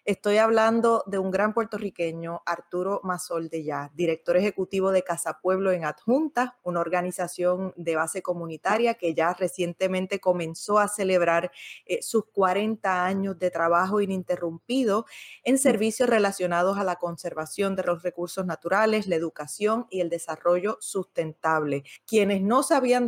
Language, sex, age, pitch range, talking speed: Spanish, female, 20-39, 170-200 Hz, 140 wpm